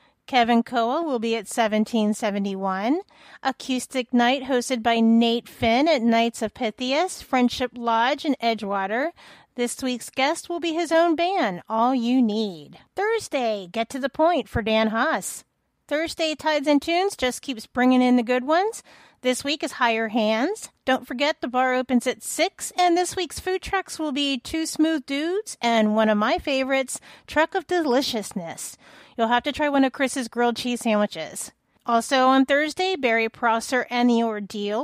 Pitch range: 230-300 Hz